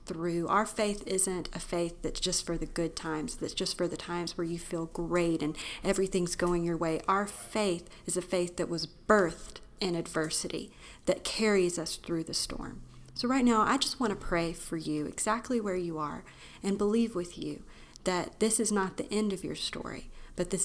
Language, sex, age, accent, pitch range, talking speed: English, female, 40-59, American, 170-210 Hz, 205 wpm